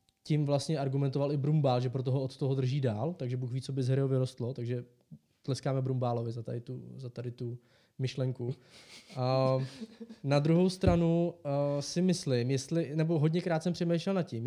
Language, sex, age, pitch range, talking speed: Czech, male, 20-39, 135-170 Hz, 185 wpm